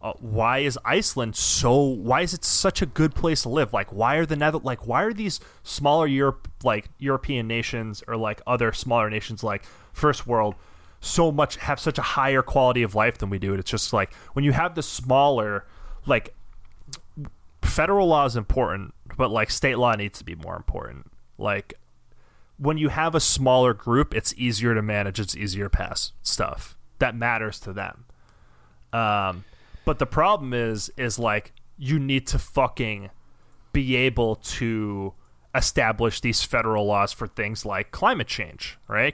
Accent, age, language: American, 30-49, English